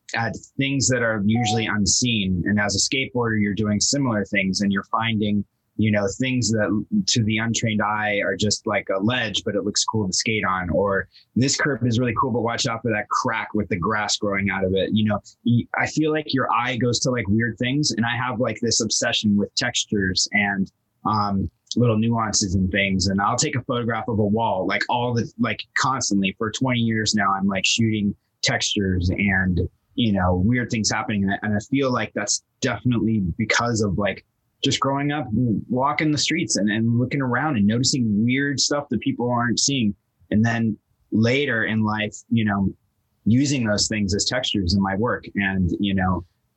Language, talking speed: English, 200 wpm